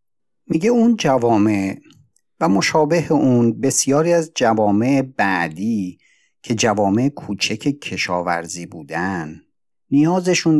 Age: 50-69